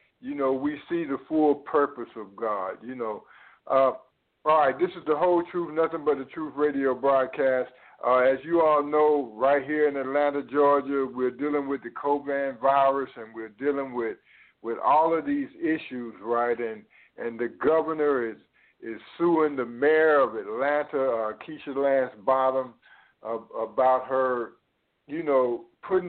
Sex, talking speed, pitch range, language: male, 165 wpm, 130-155 Hz, English